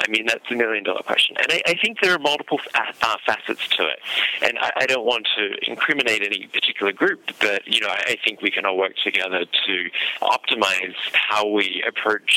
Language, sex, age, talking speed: English, male, 30-49, 210 wpm